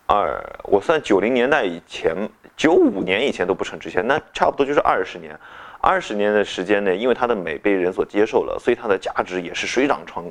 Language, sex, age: Chinese, male, 20-39